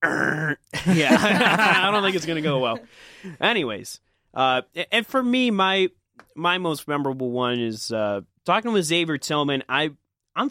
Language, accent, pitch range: English, American, 110-150 Hz